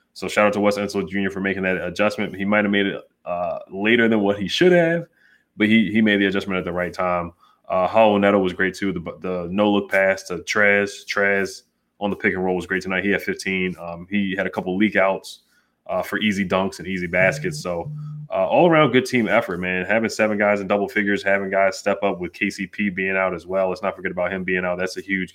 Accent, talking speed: American, 245 wpm